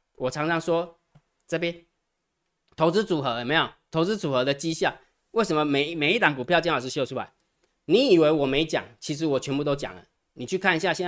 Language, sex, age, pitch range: Chinese, male, 20-39, 135-175 Hz